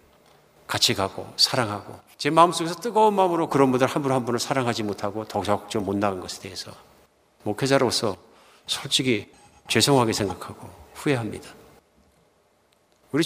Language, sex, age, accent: Korean, male, 50-69, native